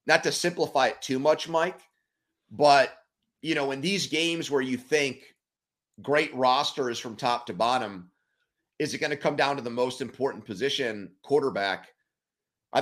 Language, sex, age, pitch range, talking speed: English, male, 30-49, 120-145 Hz, 170 wpm